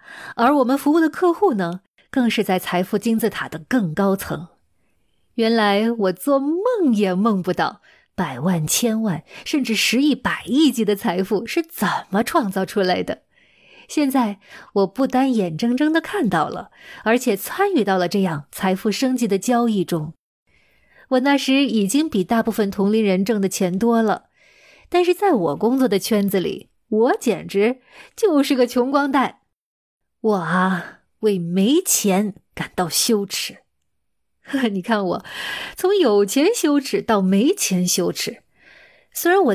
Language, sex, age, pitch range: Chinese, female, 20-39, 195-265 Hz